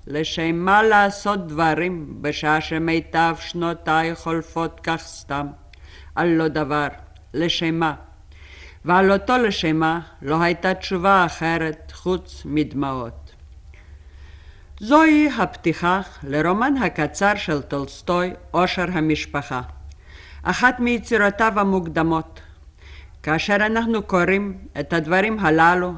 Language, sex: Hebrew, female